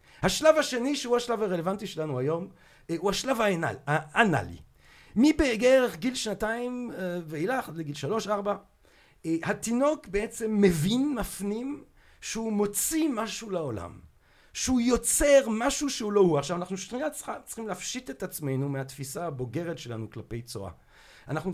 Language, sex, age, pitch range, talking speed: Hebrew, male, 40-59, 165-240 Hz, 125 wpm